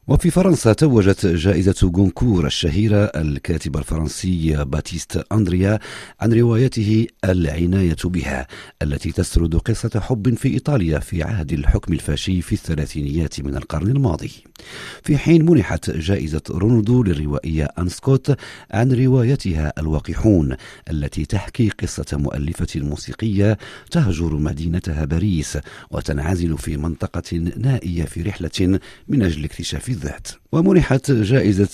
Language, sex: Arabic, male